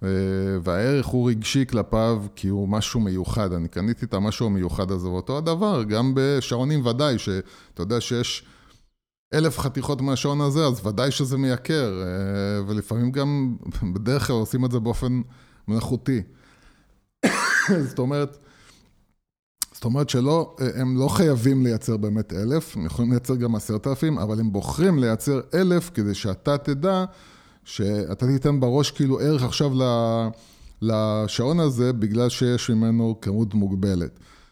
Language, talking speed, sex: Hebrew, 130 wpm, male